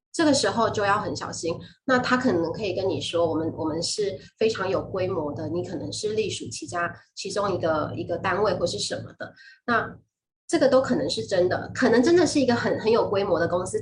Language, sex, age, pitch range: Chinese, female, 20-39, 175-245 Hz